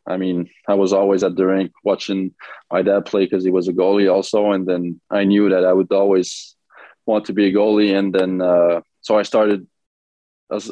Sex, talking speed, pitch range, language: male, 215 wpm, 90-105 Hz, English